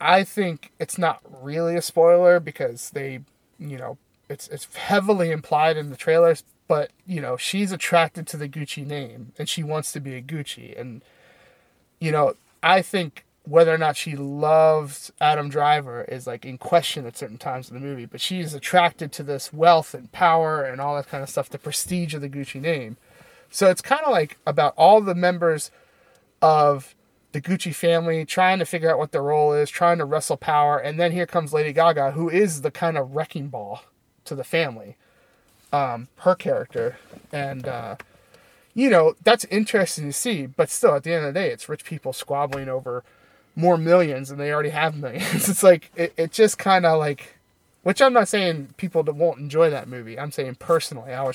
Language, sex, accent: English, male, American